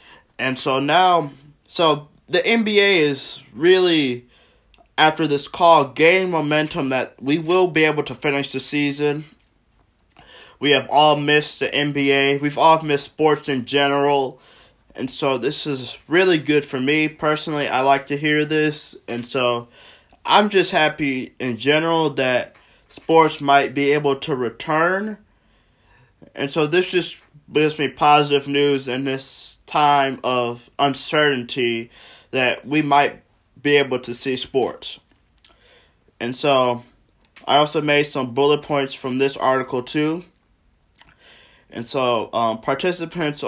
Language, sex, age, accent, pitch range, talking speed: English, male, 20-39, American, 130-150 Hz, 135 wpm